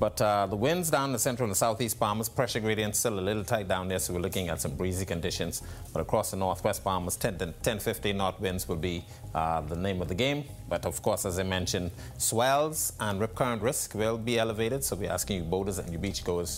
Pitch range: 95-125 Hz